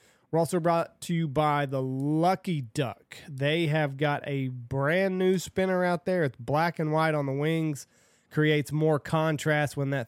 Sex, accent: male, American